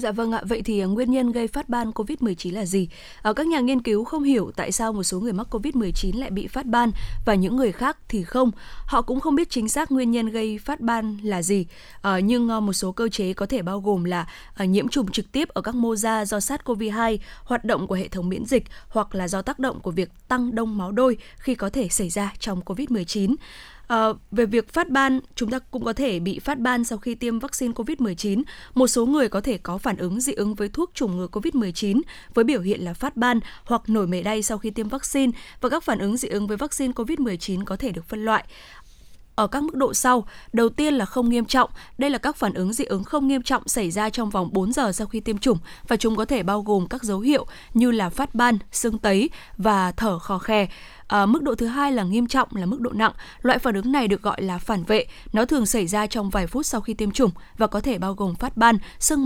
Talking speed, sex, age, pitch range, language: 250 wpm, female, 20-39, 205-255 Hz, Vietnamese